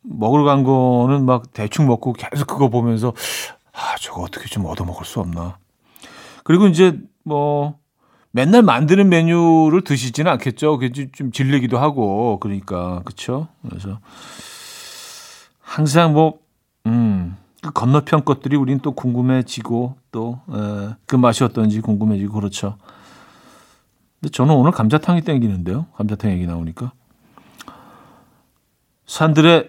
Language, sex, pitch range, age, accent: Korean, male, 115-160 Hz, 40-59, native